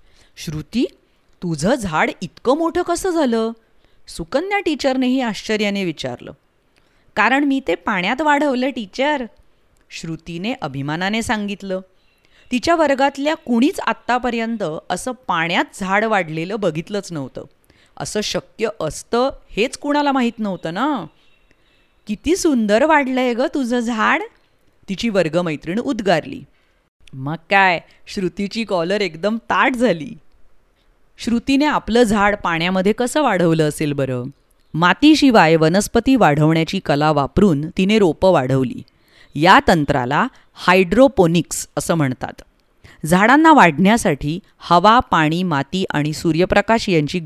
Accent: Indian